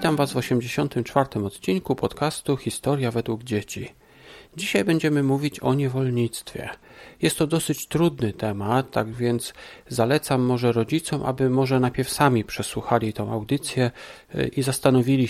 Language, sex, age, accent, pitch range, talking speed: Polish, male, 40-59, native, 120-150 Hz, 130 wpm